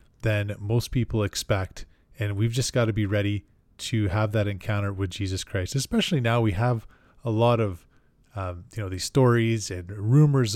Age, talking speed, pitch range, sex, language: 20-39, 180 wpm, 100-115 Hz, male, English